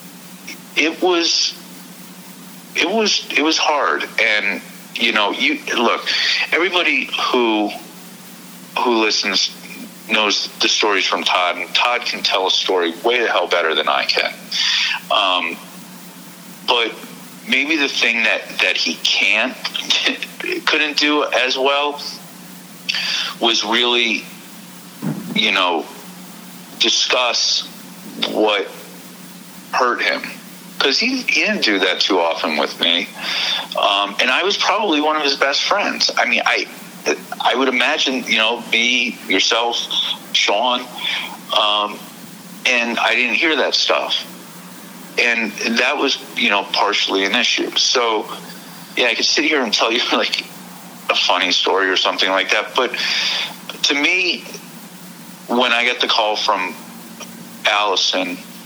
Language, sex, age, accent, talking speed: English, male, 50-69, American, 130 wpm